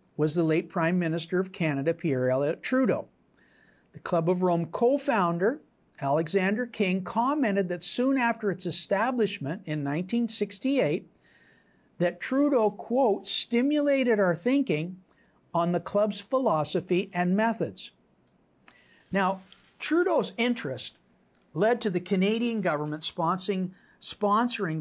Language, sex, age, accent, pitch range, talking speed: English, male, 60-79, American, 165-230 Hz, 110 wpm